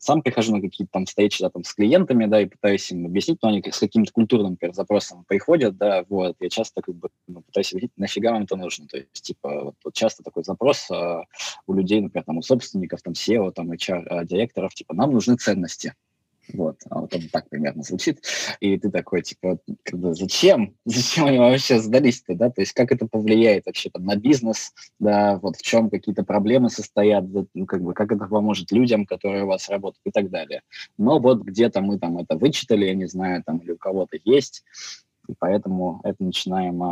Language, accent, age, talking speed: Russian, native, 20-39, 195 wpm